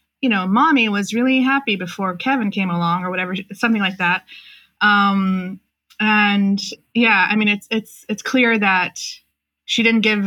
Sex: female